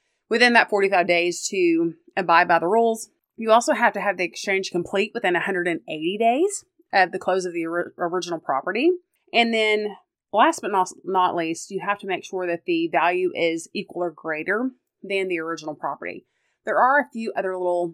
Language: English